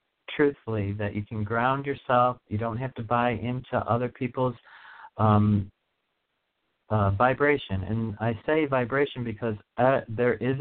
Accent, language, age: American, English, 50-69